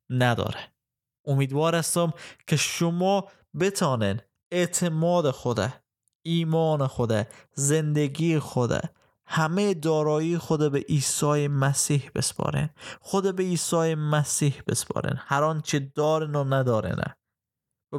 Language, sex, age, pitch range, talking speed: Persian, male, 20-39, 125-150 Hz, 100 wpm